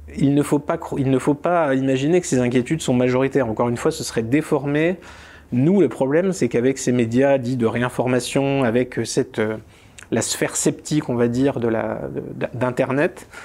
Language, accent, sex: French, French, male